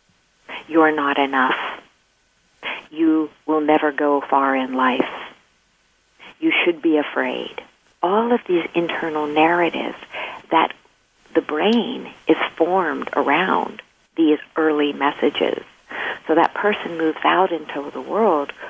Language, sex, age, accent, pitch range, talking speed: English, female, 50-69, American, 145-185 Hz, 115 wpm